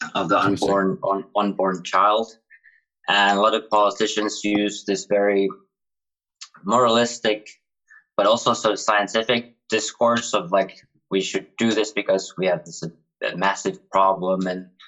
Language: English